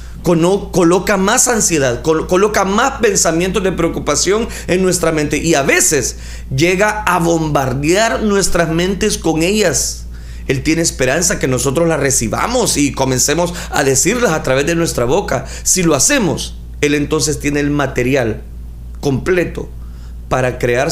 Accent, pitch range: Mexican, 125-170 Hz